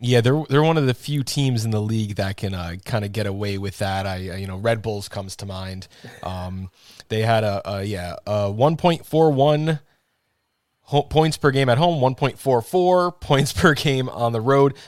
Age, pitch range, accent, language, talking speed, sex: 20-39, 110-150 Hz, American, English, 200 wpm, male